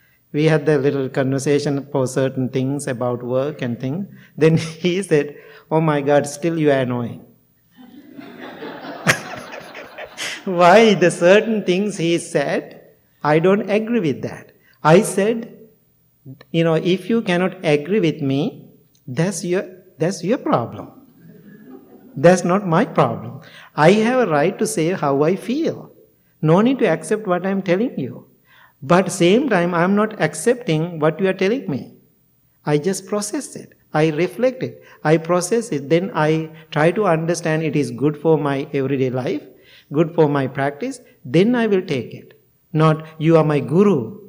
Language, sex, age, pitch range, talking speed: English, male, 60-79, 150-200 Hz, 155 wpm